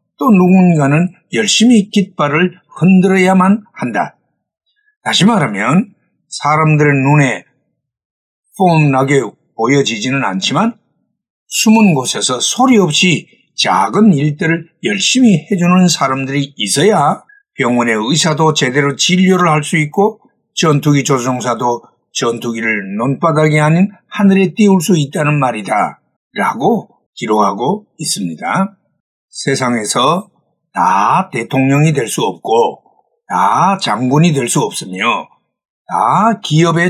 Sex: male